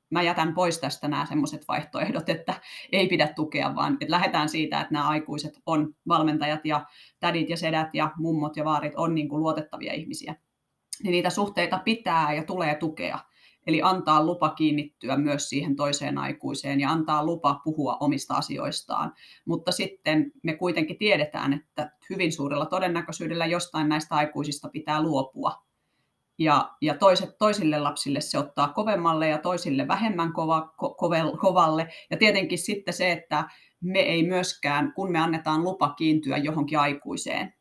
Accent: native